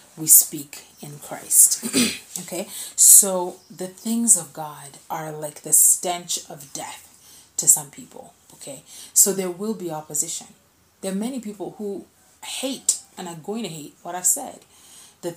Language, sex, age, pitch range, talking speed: English, female, 30-49, 155-190 Hz, 155 wpm